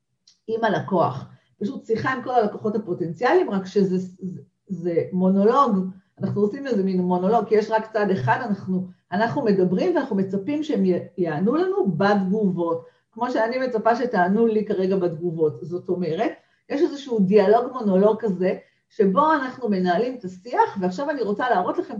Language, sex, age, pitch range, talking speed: Hebrew, female, 40-59, 185-240 Hz, 155 wpm